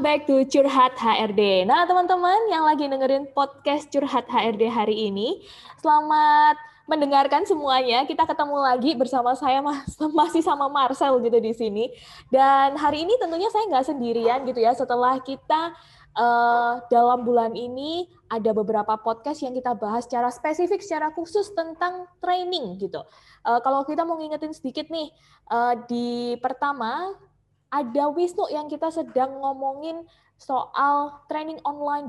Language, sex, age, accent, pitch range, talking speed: Indonesian, female, 20-39, native, 235-300 Hz, 140 wpm